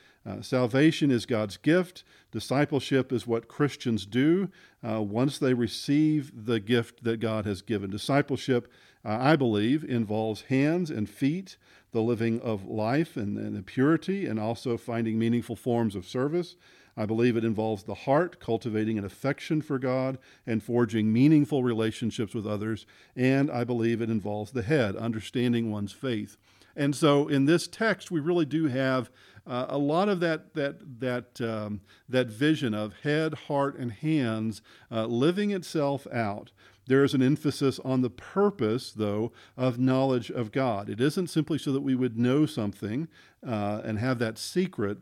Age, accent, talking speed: 50-69, American, 165 wpm